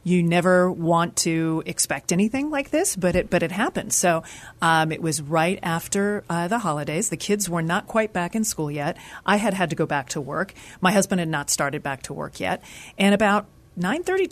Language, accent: English, American